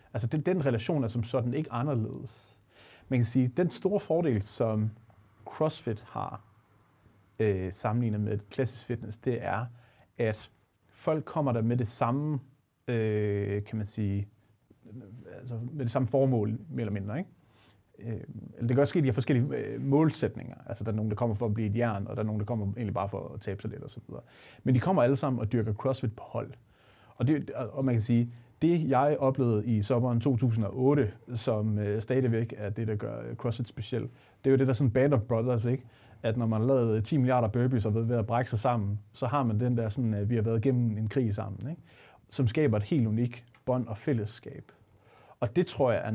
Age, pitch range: 30-49, 110-130 Hz